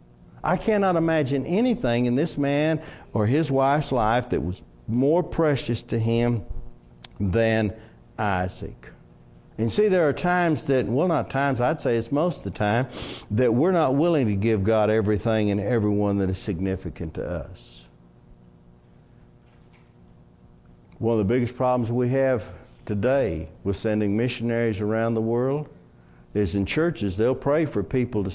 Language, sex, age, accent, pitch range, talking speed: English, male, 60-79, American, 95-125 Hz, 150 wpm